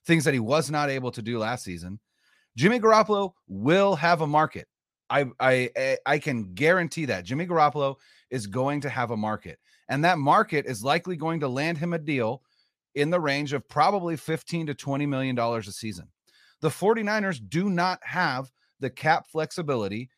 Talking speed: 180 wpm